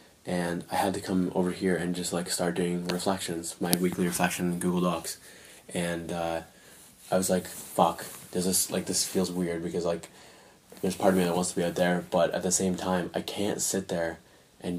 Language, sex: English, male